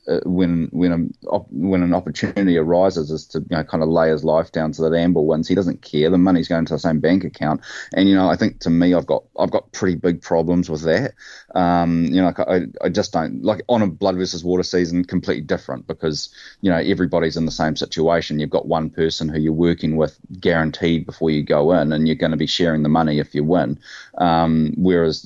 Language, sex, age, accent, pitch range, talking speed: English, male, 30-49, Australian, 80-90 Hz, 235 wpm